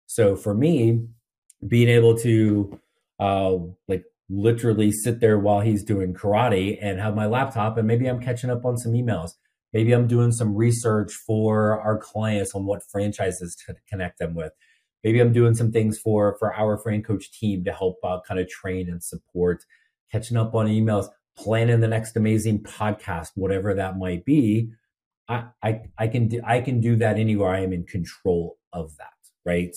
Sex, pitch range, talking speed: male, 100-120 Hz, 185 wpm